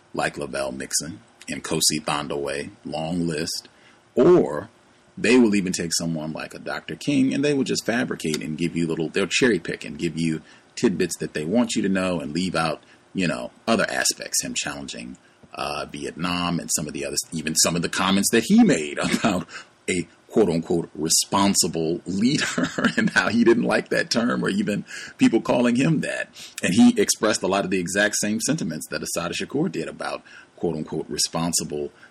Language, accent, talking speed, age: English, American, 185 wpm, 30-49